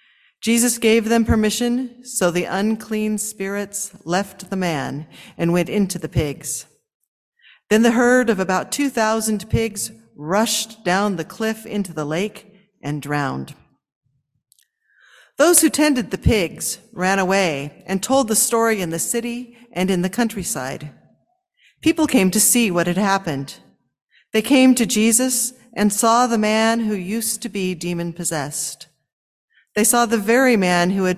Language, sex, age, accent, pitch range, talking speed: English, female, 50-69, American, 175-230 Hz, 150 wpm